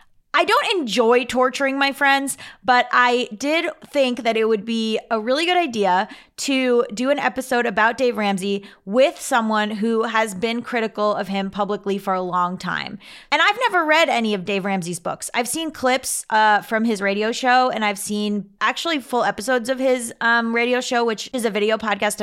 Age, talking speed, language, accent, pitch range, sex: 20-39, 190 wpm, English, American, 210-265 Hz, female